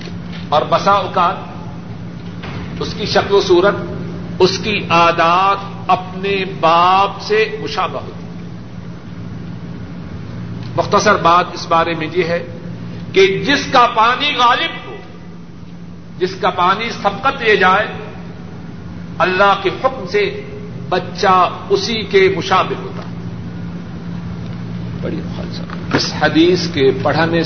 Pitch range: 135-190 Hz